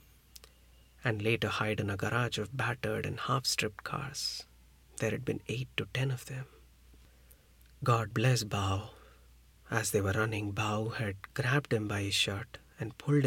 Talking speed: 160 wpm